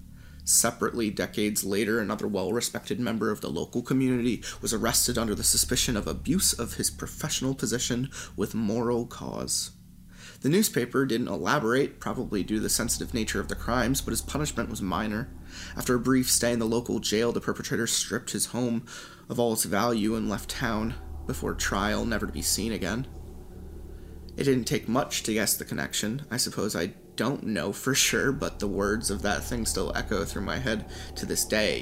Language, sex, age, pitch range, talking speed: English, male, 30-49, 90-120 Hz, 185 wpm